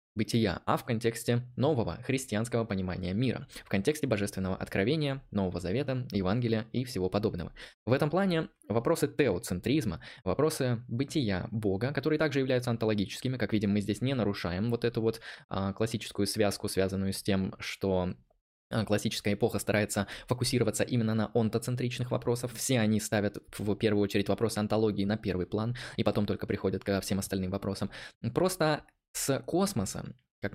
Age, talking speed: 20-39, 150 wpm